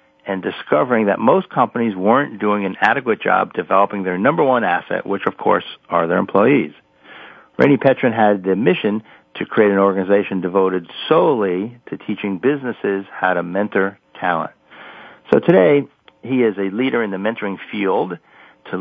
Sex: male